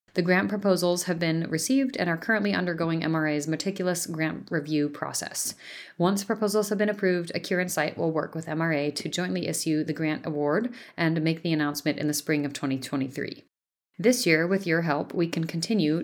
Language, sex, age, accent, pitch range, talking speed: English, female, 30-49, American, 155-195 Hz, 180 wpm